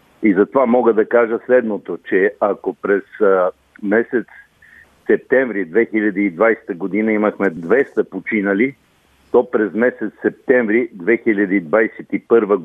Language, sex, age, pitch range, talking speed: Bulgarian, male, 50-69, 100-125 Hz, 105 wpm